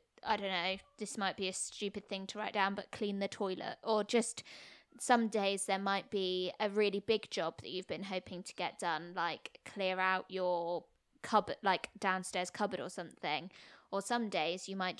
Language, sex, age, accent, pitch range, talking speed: English, female, 20-39, British, 185-205 Hz, 195 wpm